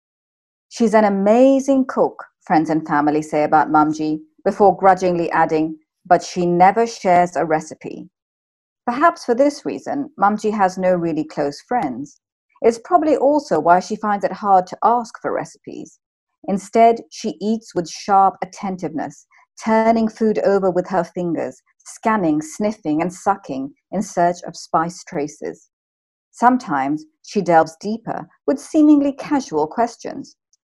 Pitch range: 175-265 Hz